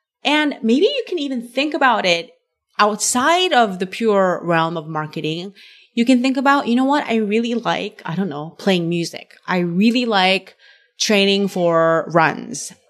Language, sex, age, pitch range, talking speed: English, female, 30-49, 185-275 Hz, 165 wpm